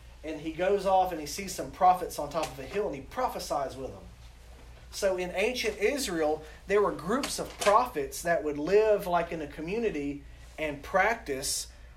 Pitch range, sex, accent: 135-190 Hz, male, American